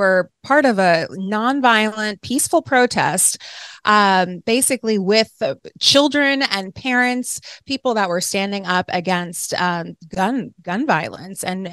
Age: 20-39